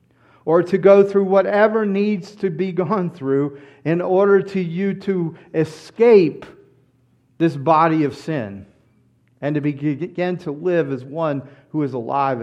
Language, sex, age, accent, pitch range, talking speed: English, male, 40-59, American, 140-210 Hz, 145 wpm